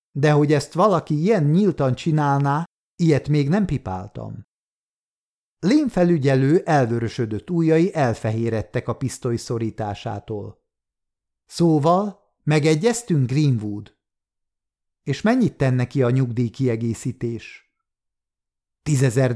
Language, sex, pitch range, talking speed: Hungarian, male, 110-160 Hz, 95 wpm